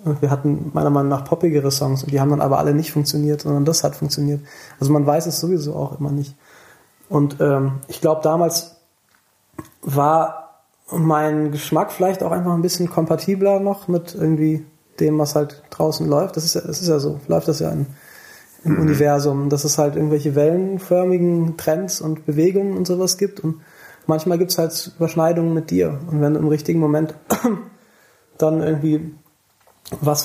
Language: German